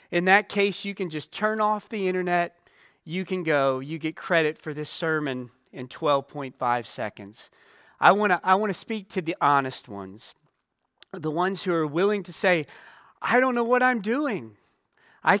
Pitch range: 155-205 Hz